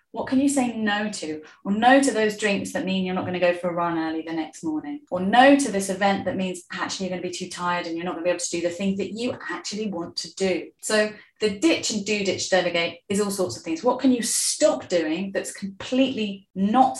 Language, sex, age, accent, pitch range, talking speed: English, female, 30-49, British, 180-245 Hz, 270 wpm